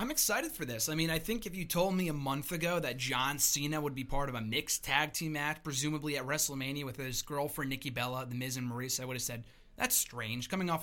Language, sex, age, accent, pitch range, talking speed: English, male, 30-49, American, 135-175 Hz, 260 wpm